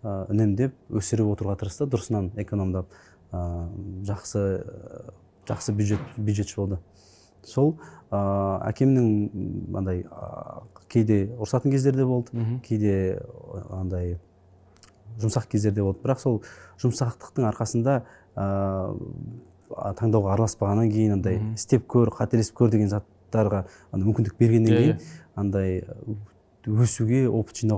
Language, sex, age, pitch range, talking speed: Russian, male, 30-49, 95-115 Hz, 55 wpm